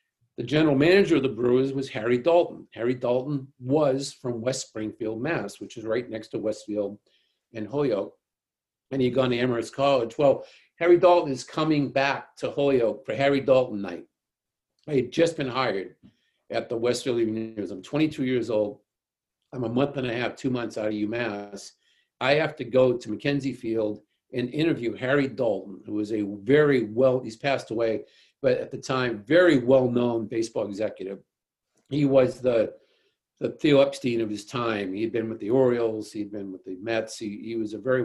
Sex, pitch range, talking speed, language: male, 110-140 Hz, 185 wpm, English